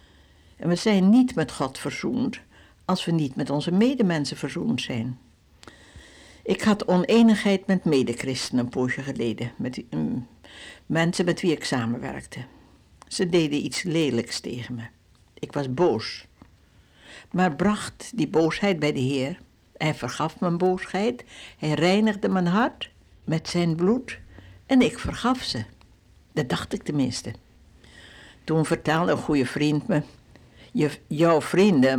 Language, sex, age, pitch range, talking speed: Dutch, female, 60-79, 130-200 Hz, 140 wpm